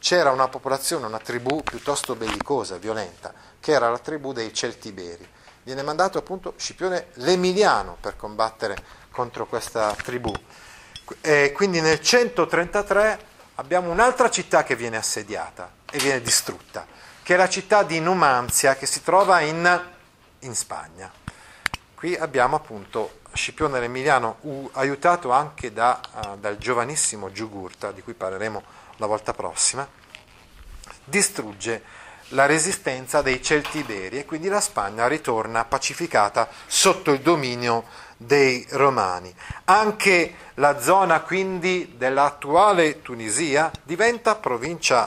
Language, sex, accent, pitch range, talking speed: Italian, male, native, 120-185 Hz, 120 wpm